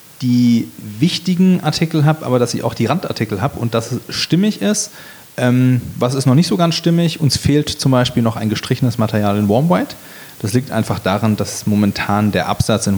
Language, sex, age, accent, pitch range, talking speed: German, male, 30-49, German, 105-135 Hz, 200 wpm